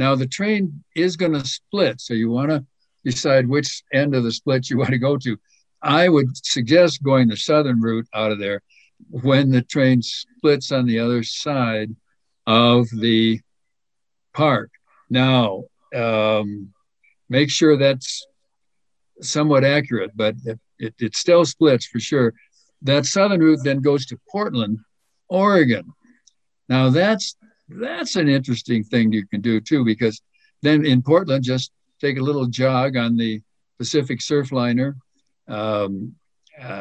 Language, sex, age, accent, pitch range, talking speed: English, male, 60-79, American, 120-150 Hz, 145 wpm